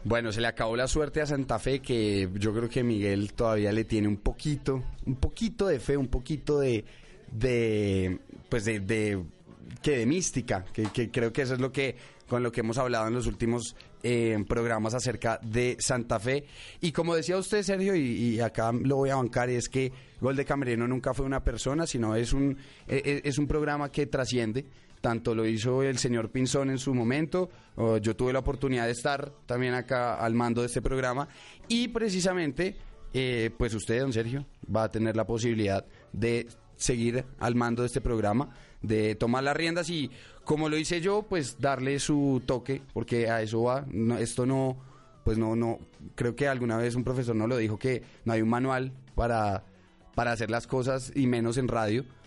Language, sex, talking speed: Spanish, male, 195 wpm